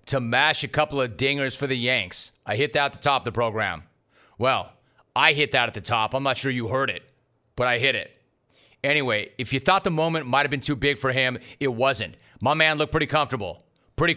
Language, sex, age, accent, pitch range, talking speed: English, male, 30-49, American, 130-155 Hz, 235 wpm